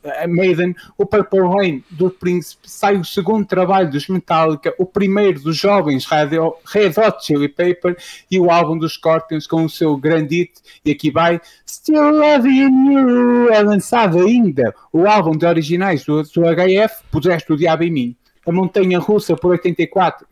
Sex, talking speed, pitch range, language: male, 170 wpm, 155-190 Hz, Portuguese